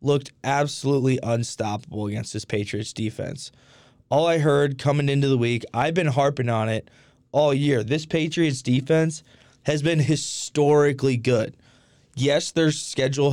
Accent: American